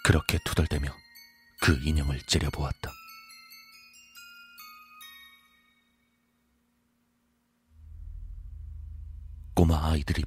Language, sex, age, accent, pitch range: Korean, male, 40-59, native, 75-85 Hz